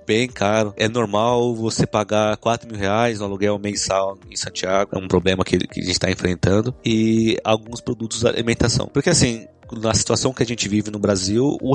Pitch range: 105-125 Hz